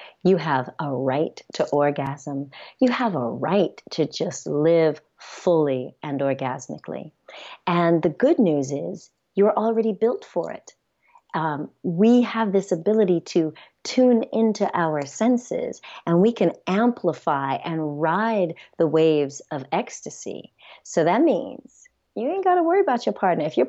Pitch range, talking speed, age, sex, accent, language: 155-225 Hz, 150 wpm, 40-59, female, American, English